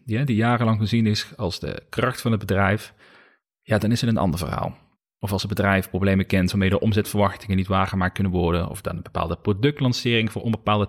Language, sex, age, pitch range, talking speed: Dutch, male, 30-49, 95-125 Hz, 215 wpm